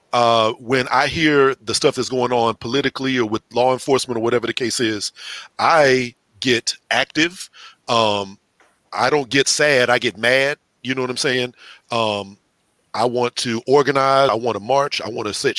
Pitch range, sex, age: 115-135 Hz, male, 40-59